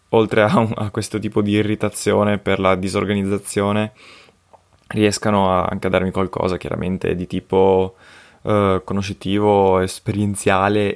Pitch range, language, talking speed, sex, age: 95-110 Hz, Italian, 115 wpm, male, 20-39